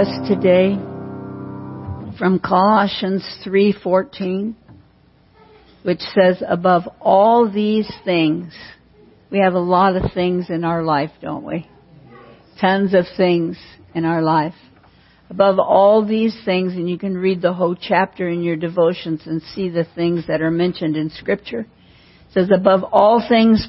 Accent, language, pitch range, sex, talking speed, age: American, English, 165-195 Hz, female, 140 wpm, 60-79